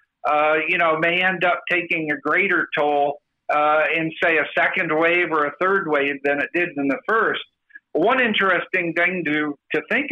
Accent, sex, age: American, male, 50-69